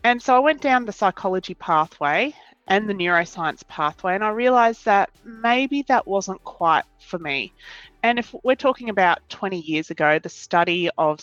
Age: 30-49